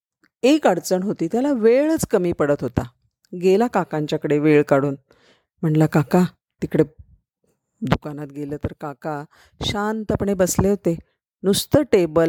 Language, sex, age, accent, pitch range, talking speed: Marathi, female, 40-59, native, 155-210 Hz, 115 wpm